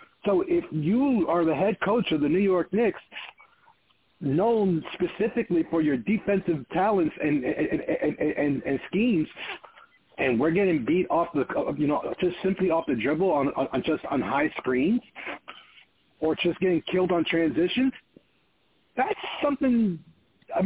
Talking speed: 155 wpm